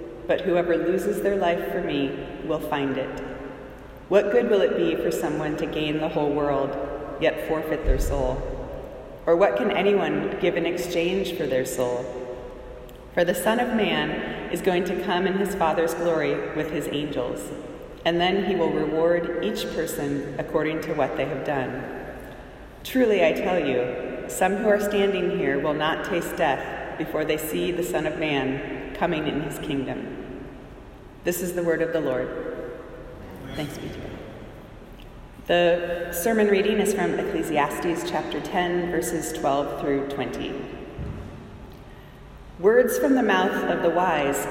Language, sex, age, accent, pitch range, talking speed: English, female, 30-49, American, 150-180 Hz, 160 wpm